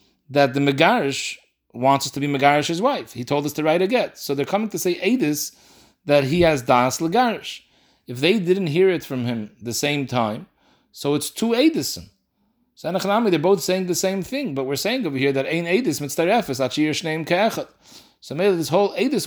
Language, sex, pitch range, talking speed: English, male, 135-180 Hz, 180 wpm